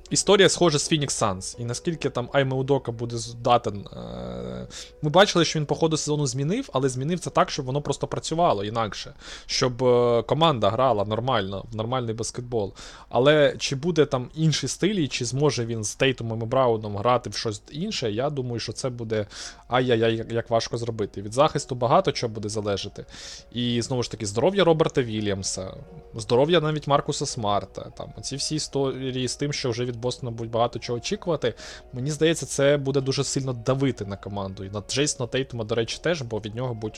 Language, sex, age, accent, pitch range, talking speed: Ukrainian, male, 20-39, native, 115-145 Hz, 185 wpm